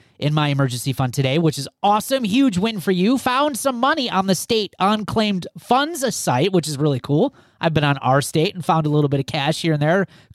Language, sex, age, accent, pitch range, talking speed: English, male, 30-49, American, 150-235 Hz, 240 wpm